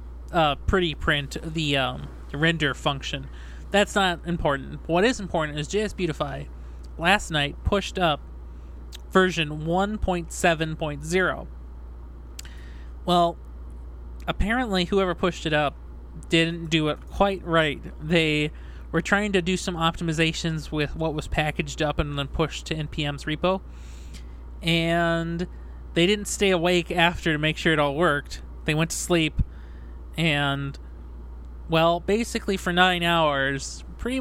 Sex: male